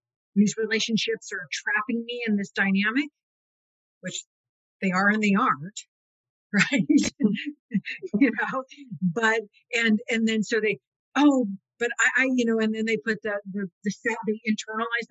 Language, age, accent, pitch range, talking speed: English, 50-69, American, 185-225 Hz, 155 wpm